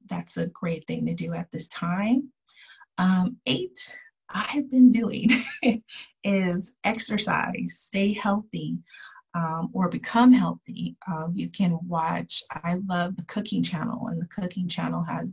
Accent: American